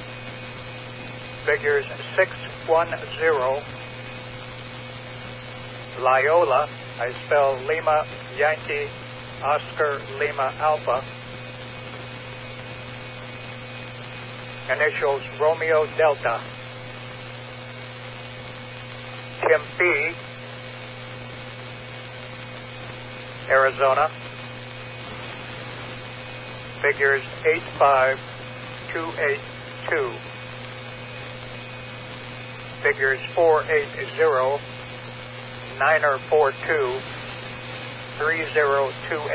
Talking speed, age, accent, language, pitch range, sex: 40 wpm, 60-79, American, English, 125-135 Hz, male